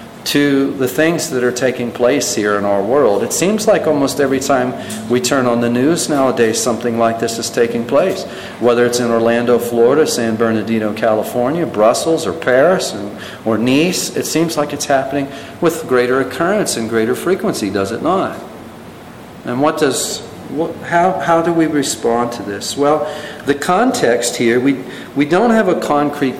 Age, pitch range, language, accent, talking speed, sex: 50-69, 115-140 Hz, English, American, 175 wpm, male